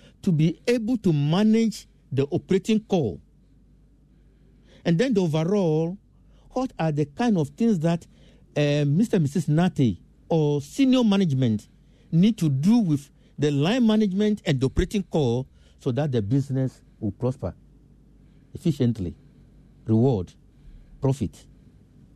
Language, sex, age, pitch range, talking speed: English, male, 60-79, 135-195 Hz, 125 wpm